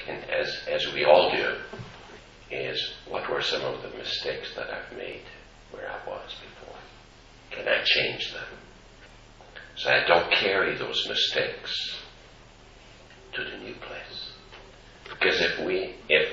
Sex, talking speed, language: male, 140 wpm, English